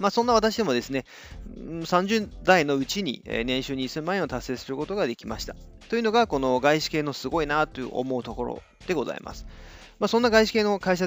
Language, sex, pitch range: Japanese, male, 120-165 Hz